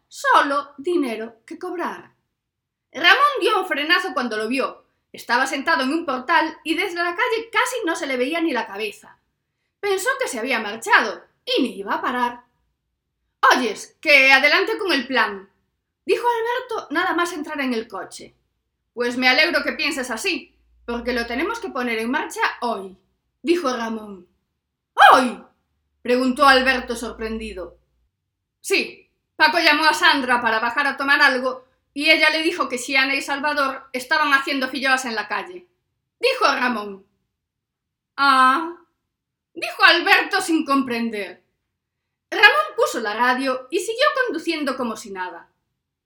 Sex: female